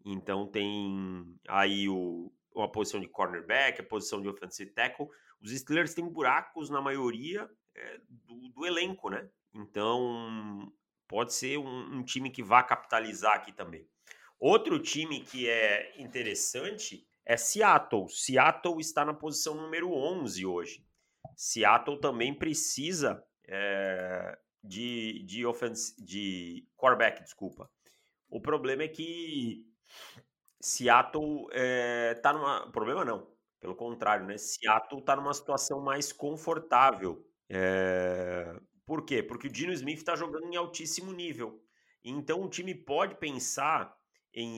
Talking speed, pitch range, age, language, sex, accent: 125 wpm, 105-155 Hz, 30-49, Portuguese, male, Brazilian